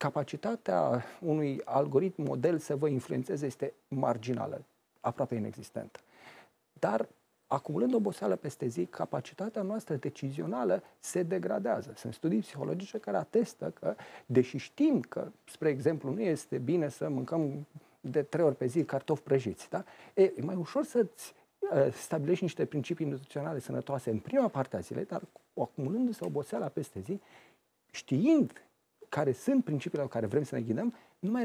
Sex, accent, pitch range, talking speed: male, native, 140-205 Hz, 145 wpm